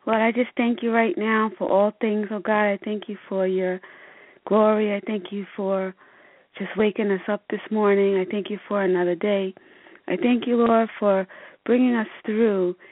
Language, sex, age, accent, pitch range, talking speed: English, female, 30-49, American, 185-215 Hz, 195 wpm